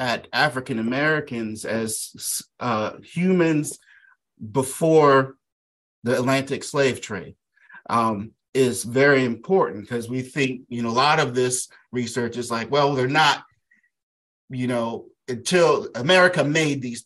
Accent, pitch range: American, 115-140 Hz